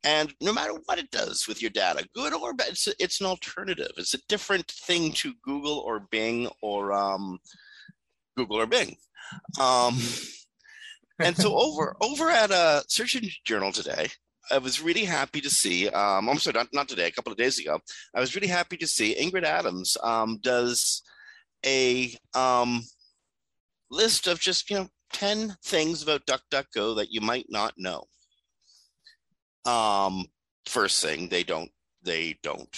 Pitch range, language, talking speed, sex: 120-200 Hz, English, 165 wpm, male